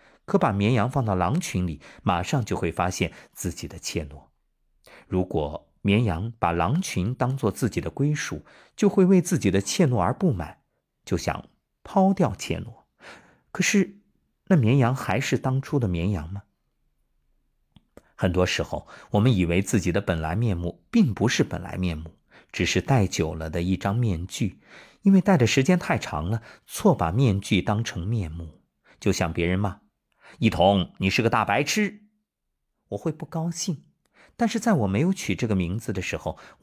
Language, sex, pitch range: Chinese, male, 90-140 Hz